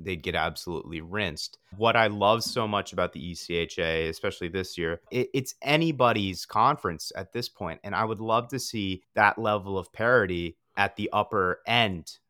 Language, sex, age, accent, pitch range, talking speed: English, male, 30-49, American, 90-115 Hz, 170 wpm